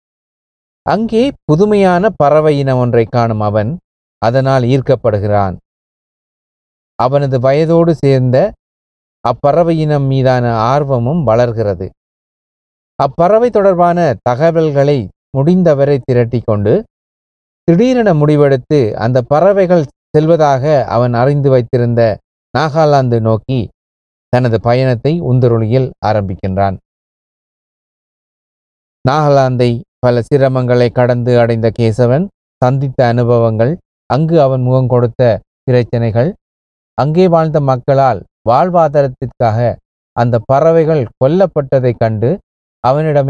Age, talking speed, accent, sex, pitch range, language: 30-49, 80 wpm, native, male, 115-150 Hz, Tamil